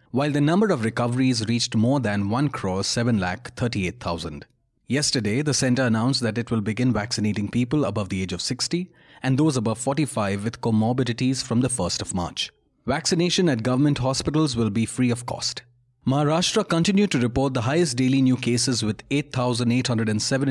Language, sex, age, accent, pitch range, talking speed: English, male, 30-49, Indian, 115-145 Hz, 175 wpm